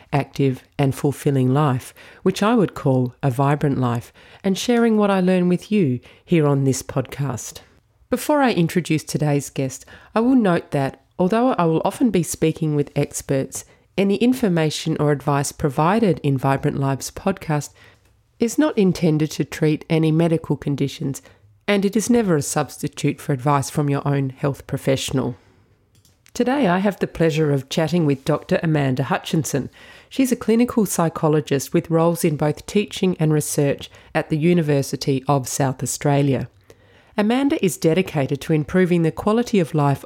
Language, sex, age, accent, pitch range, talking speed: English, female, 40-59, Australian, 135-180 Hz, 160 wpm